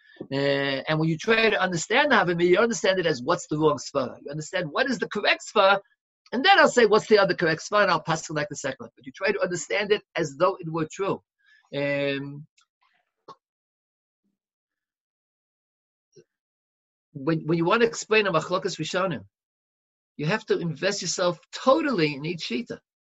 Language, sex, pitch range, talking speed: English, male, 150-200 Hz, 175 wpm